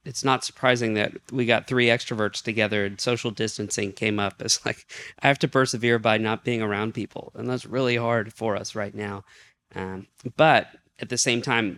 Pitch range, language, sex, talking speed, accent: 105-125 Hz, English, male, 200 wpm, American